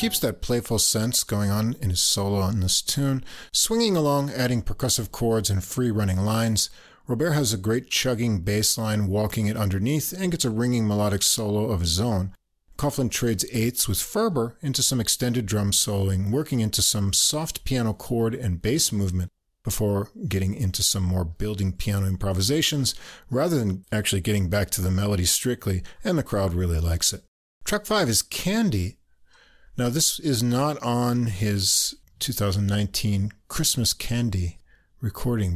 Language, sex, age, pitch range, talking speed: English, male, 40-59, 95-120 Hz, 160 wpm